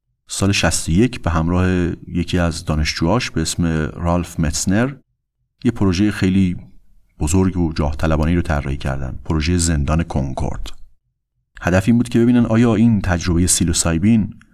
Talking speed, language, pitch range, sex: 135 wpm, Persian, 85-105 Hz, male